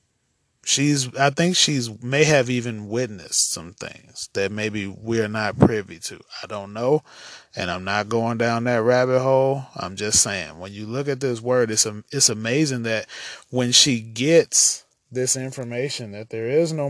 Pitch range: 110-140 Hz